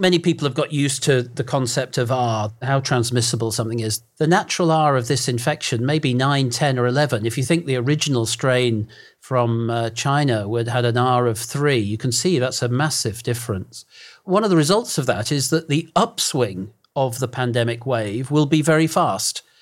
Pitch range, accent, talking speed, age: 120-145 Hz, British, 205 wpm, 40-59